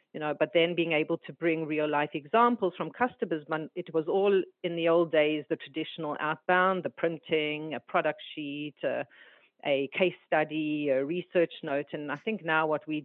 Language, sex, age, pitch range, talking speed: English, female, 40-59, 150-170 Hz, 190 wpm